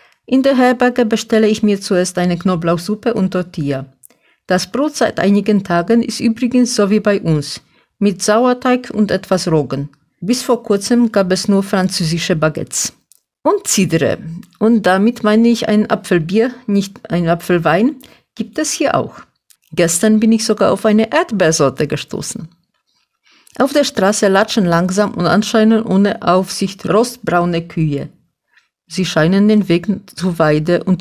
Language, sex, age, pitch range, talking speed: German, female, 50-69, 175-225 Hz, 145 wpm